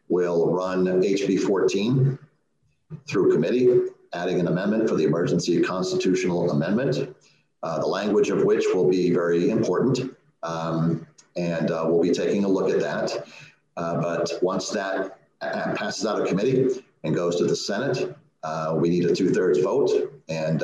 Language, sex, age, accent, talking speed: English, male, 50-69, American, 160 wpm